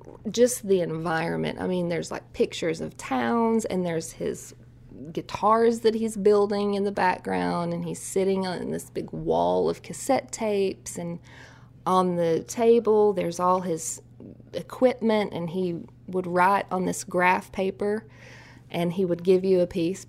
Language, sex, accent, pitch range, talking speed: English, female, American, 125-185 Hz, 160 wpm